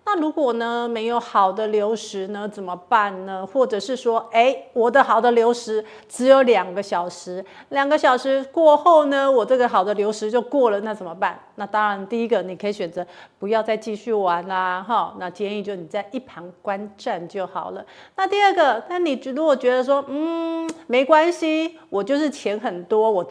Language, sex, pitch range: Chinese, female, 200-260 Hz